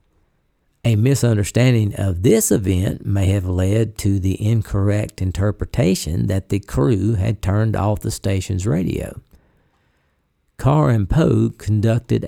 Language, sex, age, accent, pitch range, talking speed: English, male, 50-69, American, 100-125 Hz, 120 wpm